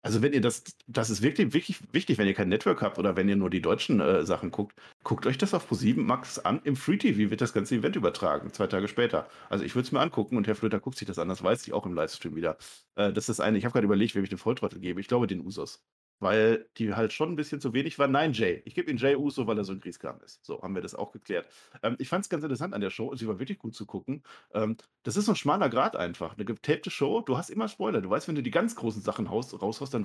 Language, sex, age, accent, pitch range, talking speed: German, male, 40-59, German, 105-145 Hz, 295 wpm